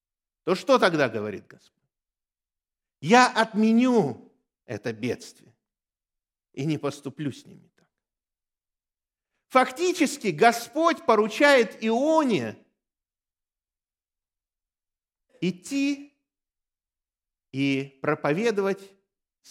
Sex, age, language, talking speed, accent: male, 50-69, Russian, 70 wpm, native